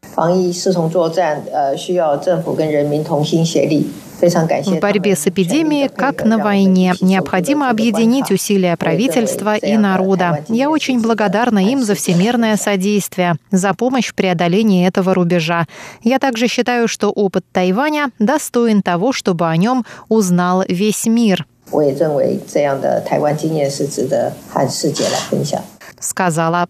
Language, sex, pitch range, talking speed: Russian, female, 185-240 Hz, 90 wpm